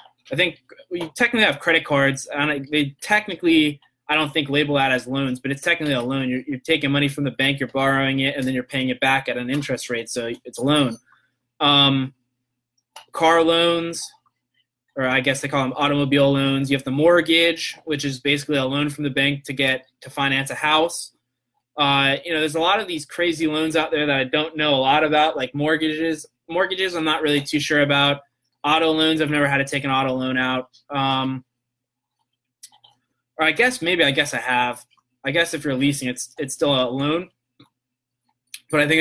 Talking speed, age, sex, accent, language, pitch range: 210 wpm, 20-39, male, American, English, 130-155 Hz